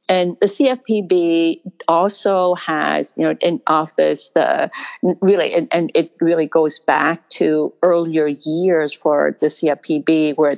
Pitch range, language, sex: 155-185 Hz, English, female